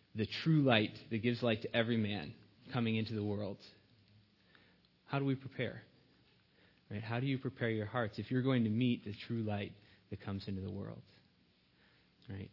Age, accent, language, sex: 30-49, American, English, male